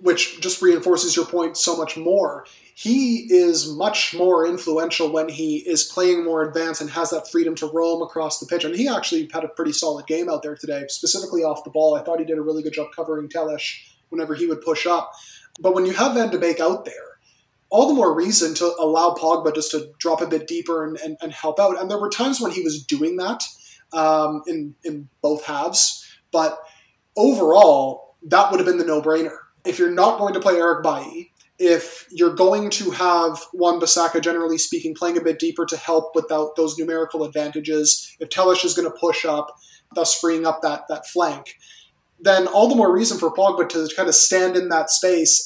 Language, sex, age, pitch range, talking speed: English, male, 20-39, 160-180 Hz, 215 wpm